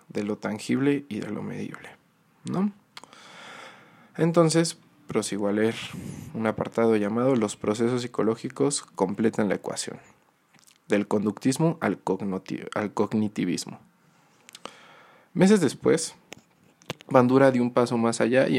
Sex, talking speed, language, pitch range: male, 115 wpm, Spanish, 105-135 Hz